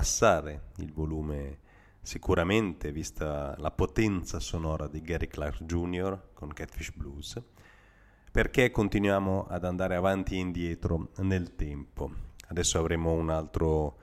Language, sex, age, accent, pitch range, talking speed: Italian, male, 30-49, native, 80-105 Hz, 115 wpm